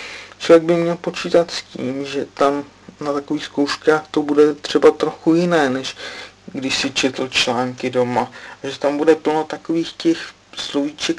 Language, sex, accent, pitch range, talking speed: Czech, male, native, 130-155 Hz, 160 wpm